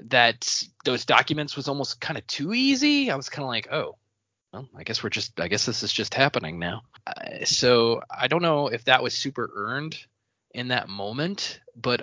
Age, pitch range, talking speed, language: 20-39, 100-135 Hz, 205 wpm, English